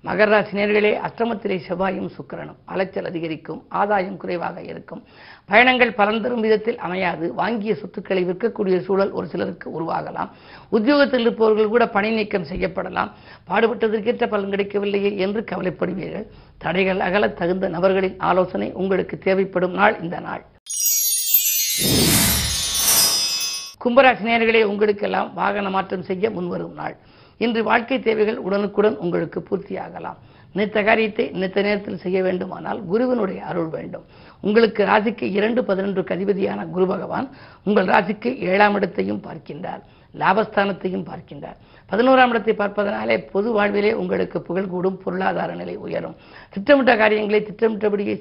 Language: Tamil